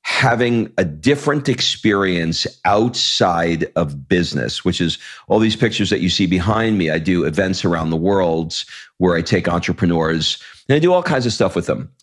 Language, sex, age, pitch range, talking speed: English, male, 40-59, 90-110 Hz, 180 wpm